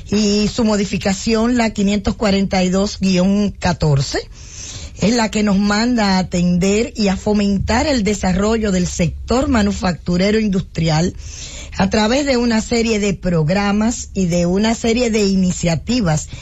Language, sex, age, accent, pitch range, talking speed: English, female, 10-29, American, 180-215 Hz, 125 wpm